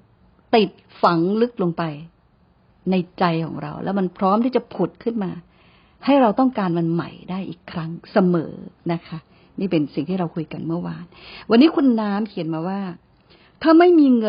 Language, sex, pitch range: Thai, female, 170-215 Hz